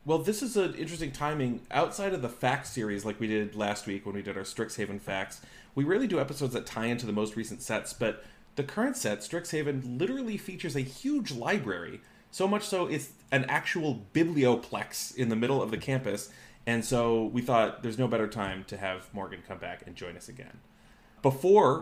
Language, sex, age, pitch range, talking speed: English, male, 30-49, 105-150 Hz, 205 wpm